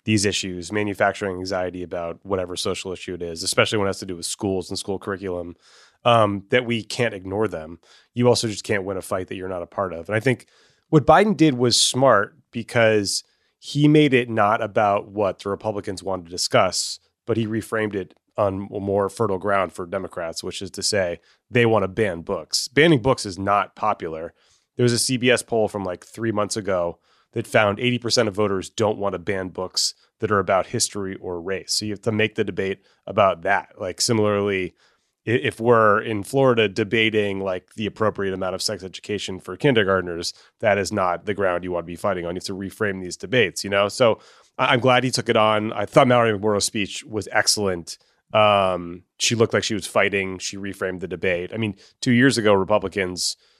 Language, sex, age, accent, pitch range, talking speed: English, male, 30-49, American, 95-110 Hz, 205 wpm